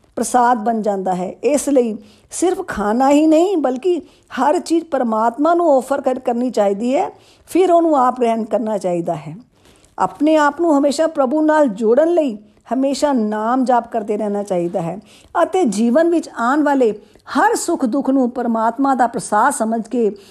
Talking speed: 155 wpm